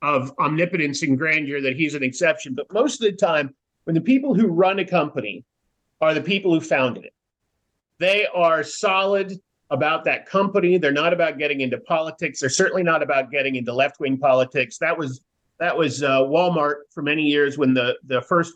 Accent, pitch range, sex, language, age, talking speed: American, 145-195 Hz, male, English, 50-69, 190 wpm